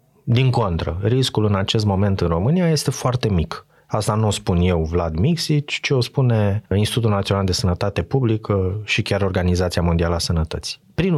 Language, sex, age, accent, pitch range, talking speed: Romanian, male, 30-49, native, 100-135 Hz, 175 wpm